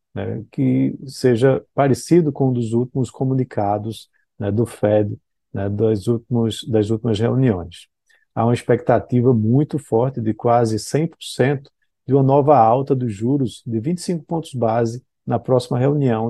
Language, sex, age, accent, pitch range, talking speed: Portuguese, male, 50-69, Brazilian, 115-145 Hz, 145 wpm